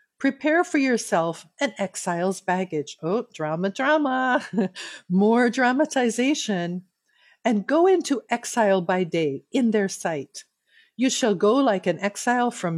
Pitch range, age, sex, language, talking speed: 185-250 Hz, 50-69, female, English, 125 wpm